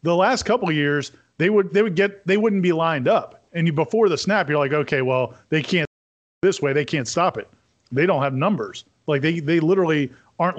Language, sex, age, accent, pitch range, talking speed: English, male, 40-59, American, 140-190 Hz, 230 wpm